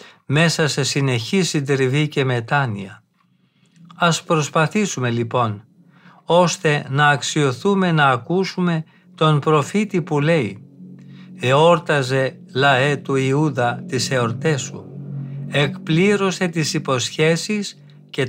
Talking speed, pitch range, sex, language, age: 95 wpm, 130-170 Hz, male, Greek, 50-69